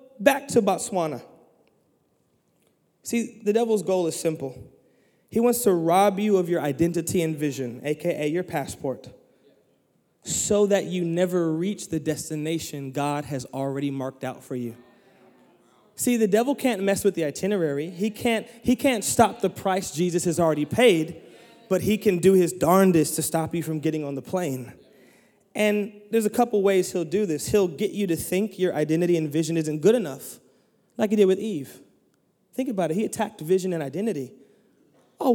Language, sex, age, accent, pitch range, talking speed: English, male, 20-39, American, 165-215 Hz, 175 wpm